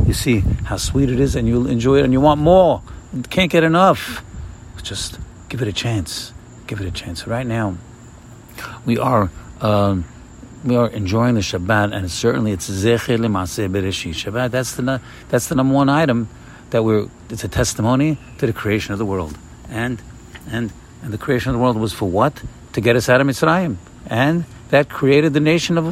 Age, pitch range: 60-79, 105-130 Hz